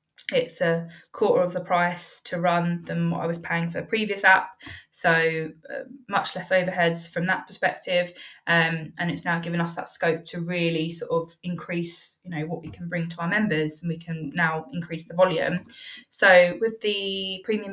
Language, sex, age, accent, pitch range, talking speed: English, female, 20-39, British, 170-185 Hz, 195 wpm